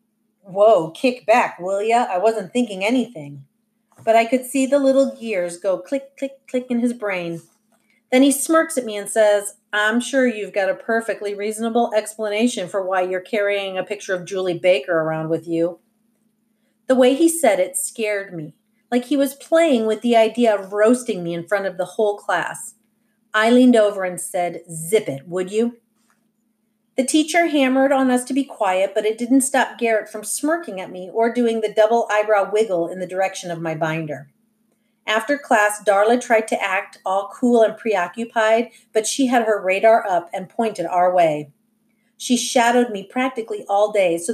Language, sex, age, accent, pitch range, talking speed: English, female, 40-59, American, 195-240 Hz, 185 wpm